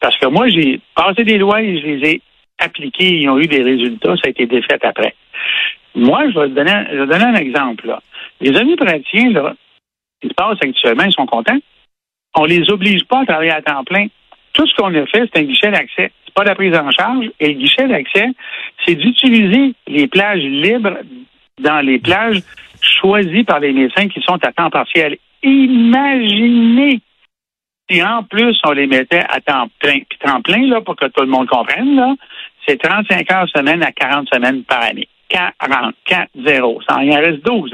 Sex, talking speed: male, 190 wpm